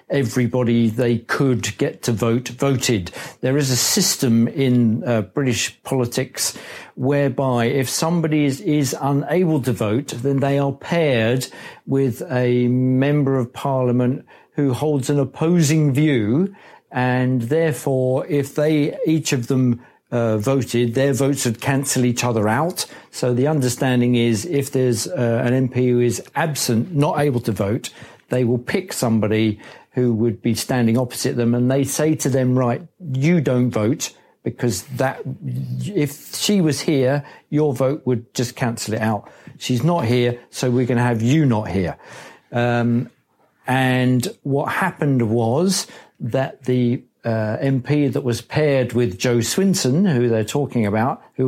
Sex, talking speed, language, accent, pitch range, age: male, 155 wpm, English, British, 120-140 Hz, 50-69